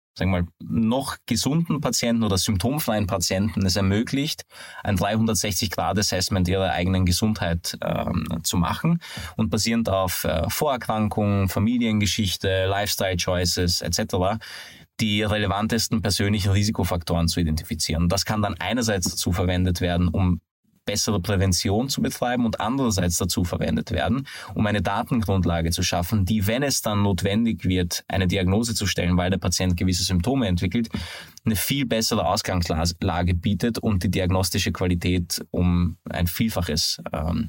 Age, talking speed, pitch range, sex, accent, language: 20-39, 135 wpm, 90-115 Hz, male, Austrian, German